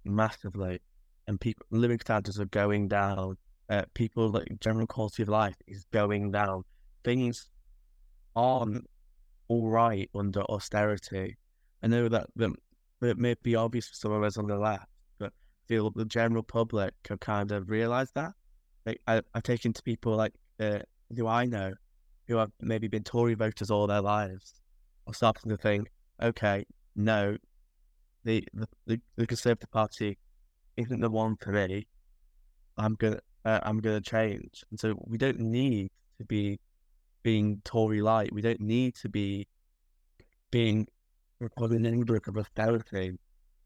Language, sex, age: English, male, 10-29